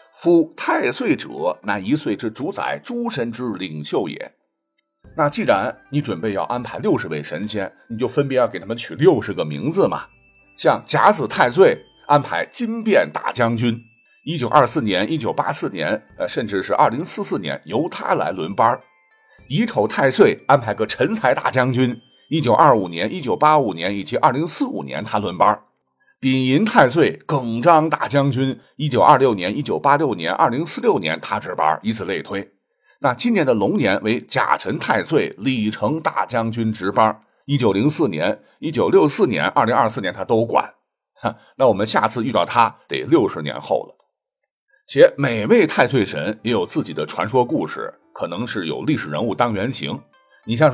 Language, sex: Chinese, male